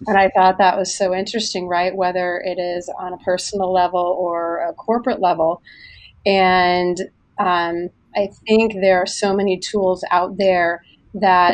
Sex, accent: female, American